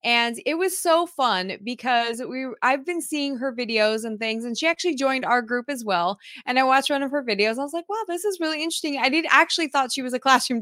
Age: 20-39